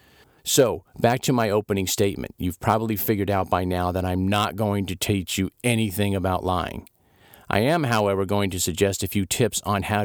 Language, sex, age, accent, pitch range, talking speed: English, male, 50-69, American, 95-115 Hz, 195 wpm